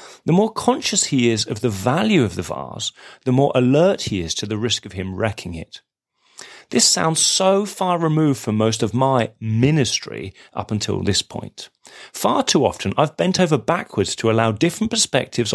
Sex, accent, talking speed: male, British, 185 wpm